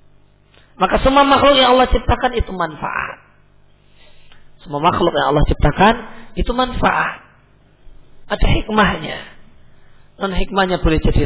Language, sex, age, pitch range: Indonesian, male, 40-59, 160-240 Hz